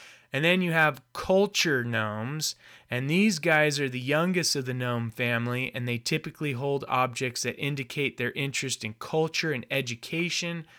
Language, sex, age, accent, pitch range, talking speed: English, male, 30-49, American, 125-150 Hz, 160 wpm